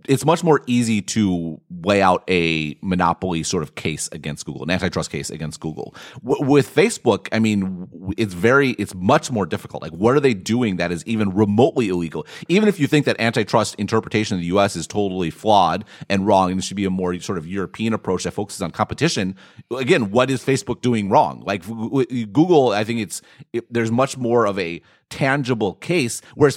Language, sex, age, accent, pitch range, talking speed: English, male, 30-49, American, 95-130 Hz, 210 wpm